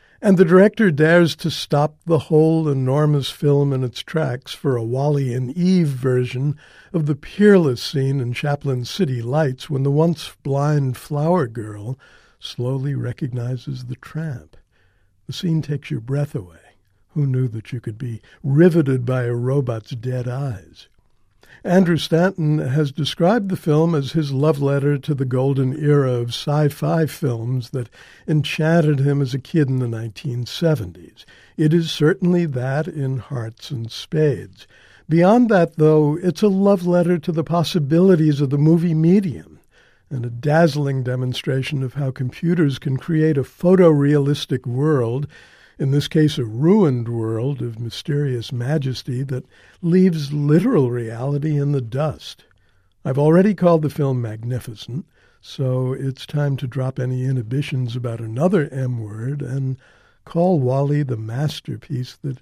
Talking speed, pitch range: 150 wpm, 125-155 Hz